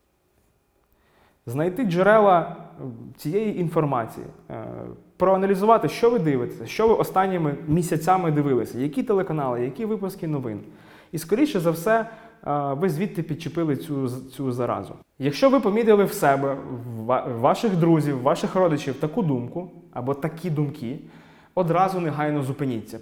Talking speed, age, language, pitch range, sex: 125 wpm, 20-39, Ukrainian, 135-185 Hz, male